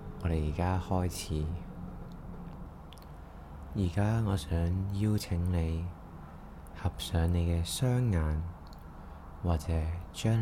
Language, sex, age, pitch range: Chinese, male, 20-39, 80-95 Hz